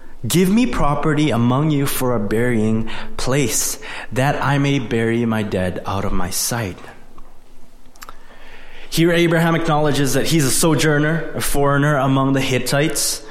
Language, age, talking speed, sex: English, 20-39, 140 wpm, male